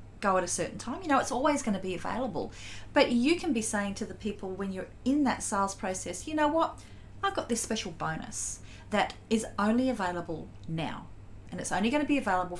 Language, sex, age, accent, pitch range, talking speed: English, female, 40-59, Australian, 175-255 Hz, 225 wpm